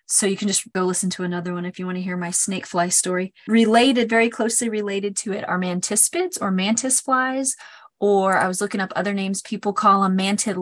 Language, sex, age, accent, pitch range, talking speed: English, female, 30-49, American, 185-230 Hz, 225 wpm